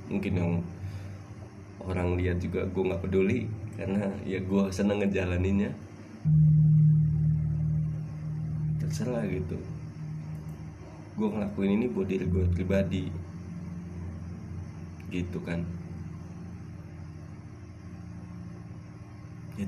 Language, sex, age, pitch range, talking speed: Indonesian, male, 20-39, 85-100 Hz, 75 wpm